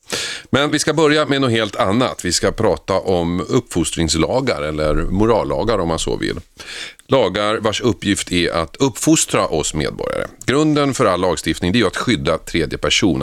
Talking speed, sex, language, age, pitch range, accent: 165 wpm, male, Swedish, 40-59, 85-120 Hz, native